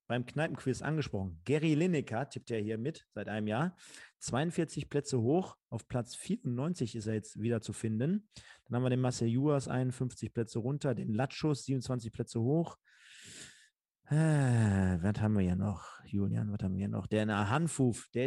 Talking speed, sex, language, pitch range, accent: 170 wpm, male, German, 115-145 Hz, German